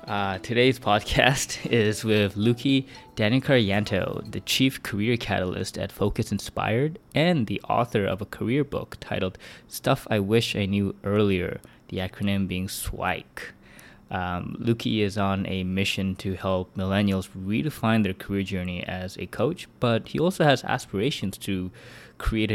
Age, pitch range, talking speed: 20-39, 95-110 Hz, 145 wpm